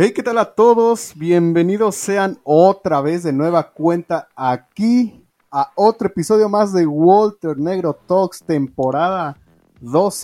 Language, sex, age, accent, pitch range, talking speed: Spanish, male, 30-49, Mexican, 145-200 Hz, 135 wpm